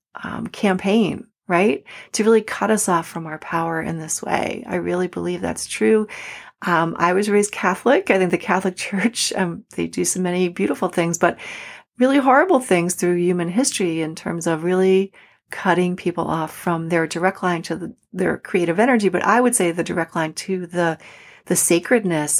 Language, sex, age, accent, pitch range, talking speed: English, female, 40-59, American, 170-210 Hz, 190 wpm